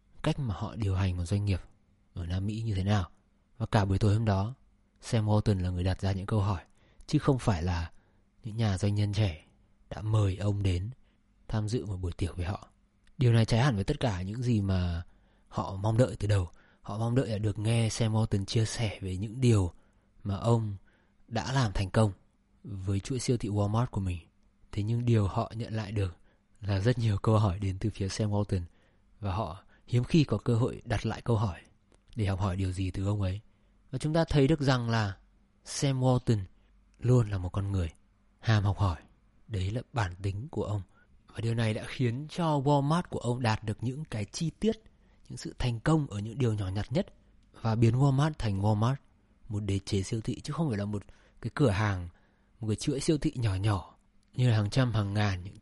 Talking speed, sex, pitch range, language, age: 220 wpm, male, 100-115 Hz, Vietnamese, 20-39